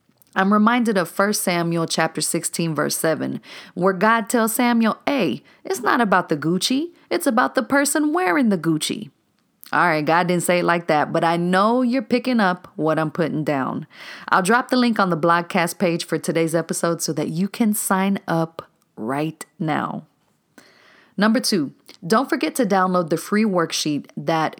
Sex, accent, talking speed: female, American, 180 wpm